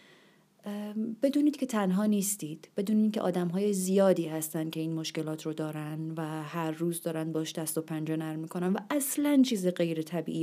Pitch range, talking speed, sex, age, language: 165-205 Hz, 160 wpm, female, 30-49, Persian